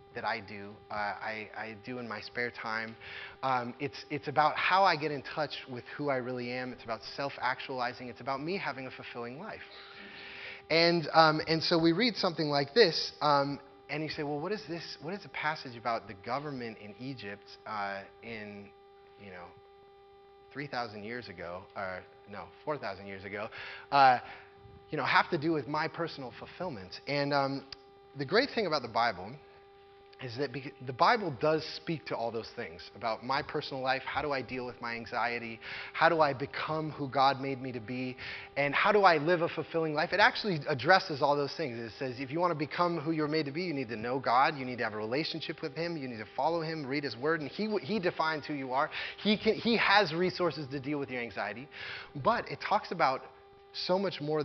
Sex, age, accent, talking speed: male, 20-39, American, 215 wpm